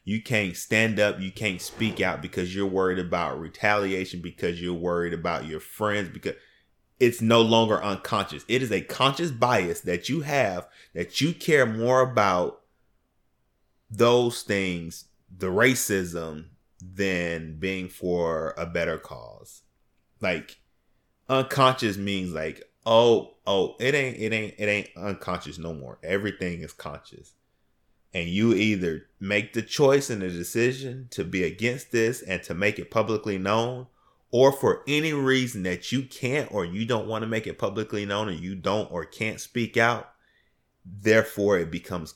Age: 20-39